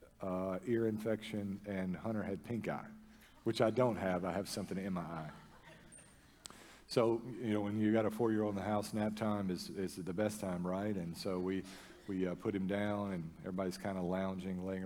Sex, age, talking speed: male, 40-59, 215 wpm